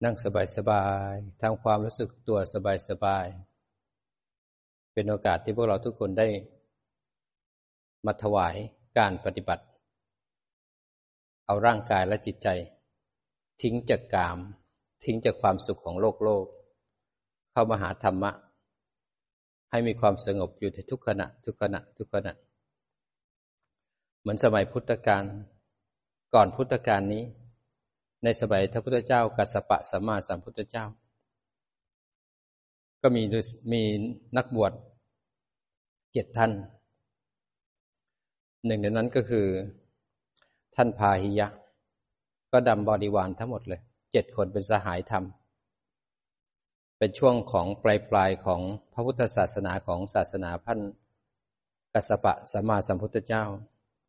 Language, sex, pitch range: Thai, male, 100-115 Hz